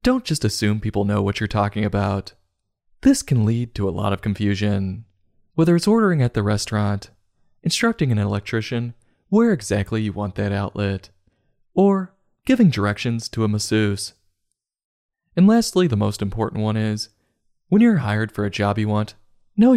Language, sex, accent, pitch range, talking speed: English, male, American, 100-120 Hz, 165 wpm